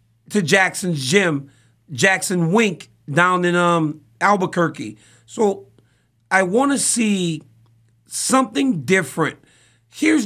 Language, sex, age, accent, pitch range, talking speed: English, male, 40-59, American, 145-200 Hz, 100 wpm